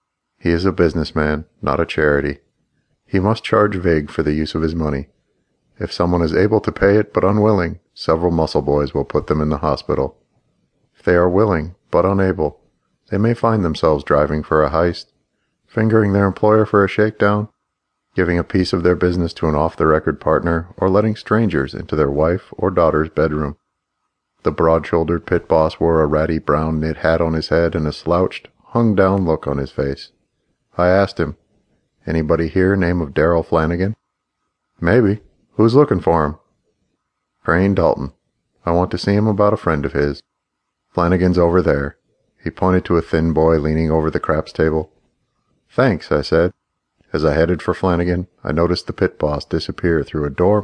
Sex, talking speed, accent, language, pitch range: male, 180 wpm, American, English, 80-95 Hz